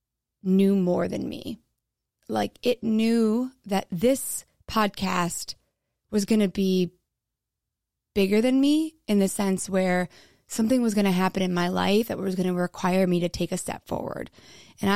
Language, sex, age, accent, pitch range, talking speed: English, female, 20-39, American, 185-215 Hz, 165 wpm